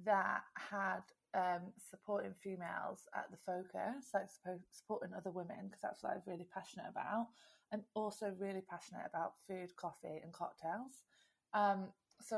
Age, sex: 20-39, female